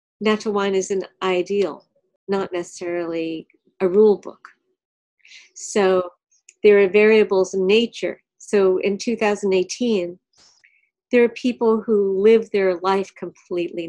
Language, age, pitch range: English, 50-69, 185-235 Hz